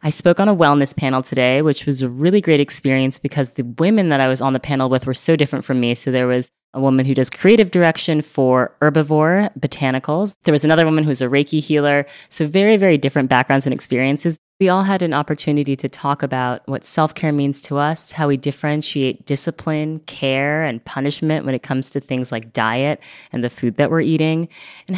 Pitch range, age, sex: 130-160 Hz, 20-39, female